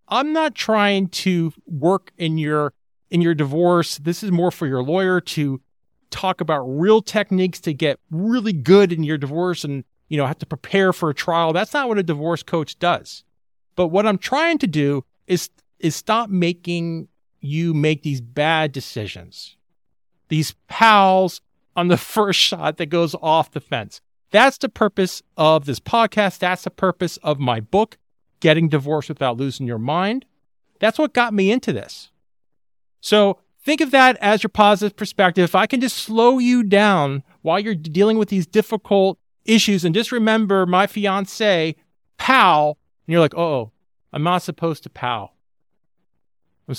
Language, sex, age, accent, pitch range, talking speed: English, male, 40-59, American, 150-205 Hz, 170 wpm